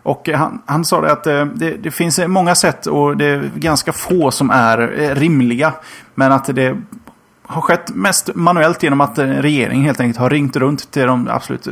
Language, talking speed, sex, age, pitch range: Swedish, 185 wpm, male, 30-49, 120-150 Hz